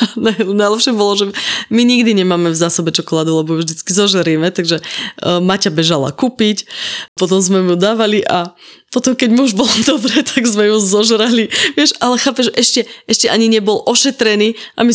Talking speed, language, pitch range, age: 165 wpm, Slovak, 170-210 Hz, 20-39